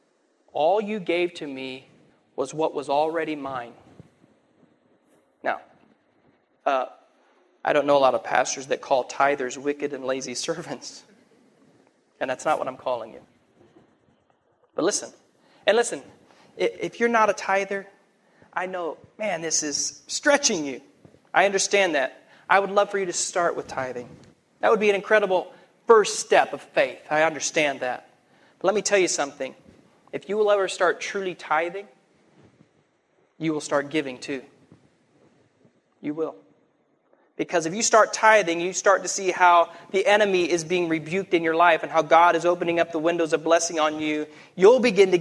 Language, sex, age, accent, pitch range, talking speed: English, male, 30-49, American, 155-205 Hz, 165 wpm